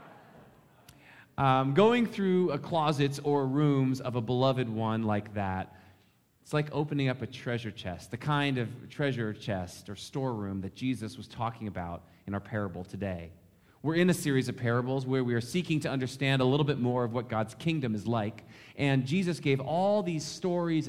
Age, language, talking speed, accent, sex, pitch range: 30-49, English, 180 wpm, American, male, 110-150 Hz